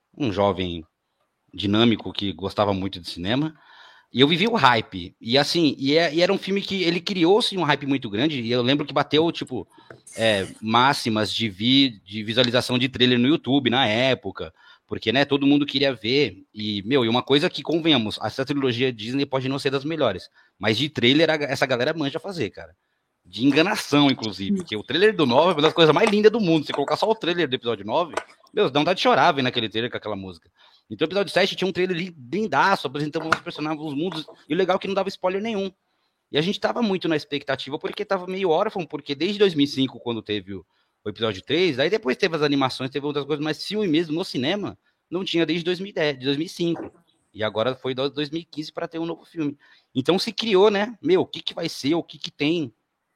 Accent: Brazilian